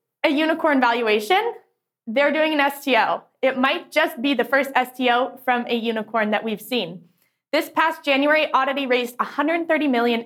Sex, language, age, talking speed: female, English, 20-39, 160 wpm